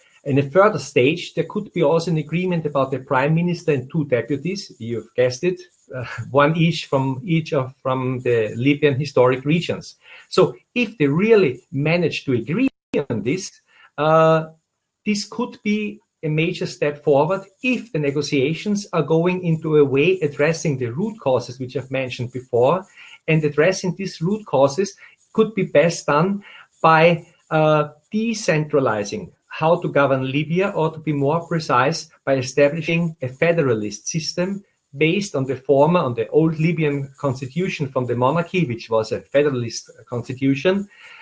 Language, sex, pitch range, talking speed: English, male, 140-175 Hz, 155 wpm